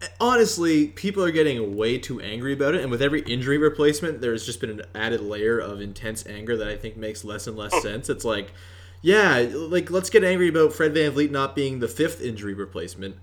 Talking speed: 215 wpm